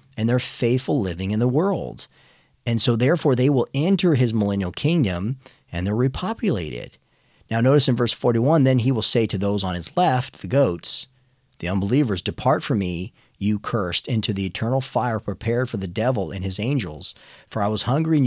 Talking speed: 190 wpm